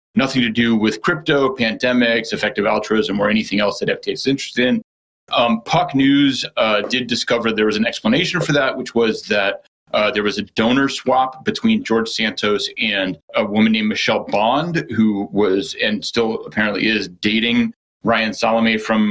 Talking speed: 175 wpm